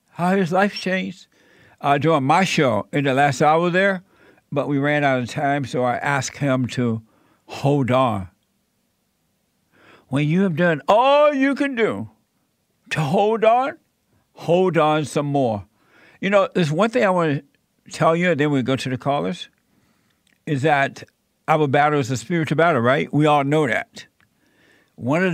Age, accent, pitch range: 60-79, American, 135-170 Hz